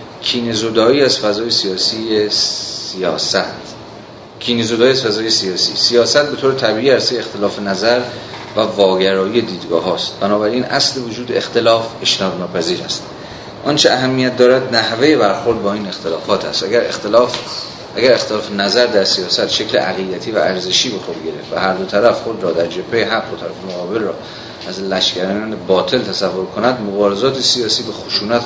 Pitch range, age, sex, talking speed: 100-120 Hz, 30-49, male, 145 wpm